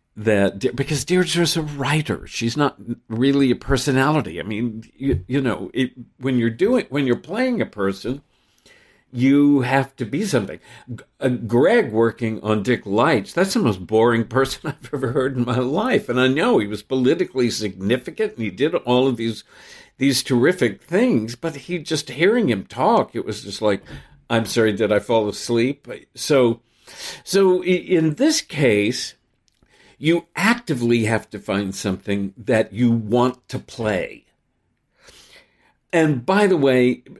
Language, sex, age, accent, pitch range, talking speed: English, male, 50-69, American, 110-140 Hz, 155 wpm